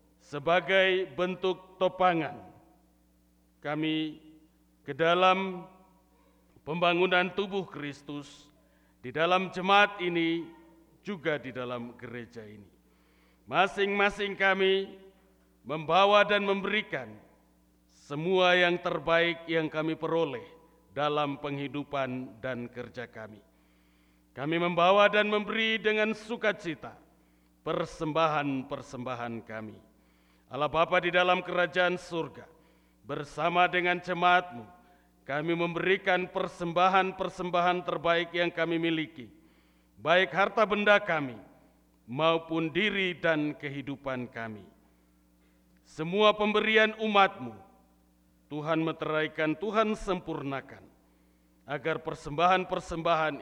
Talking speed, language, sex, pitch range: 85 wpm, Malay, male, 115-185 Hz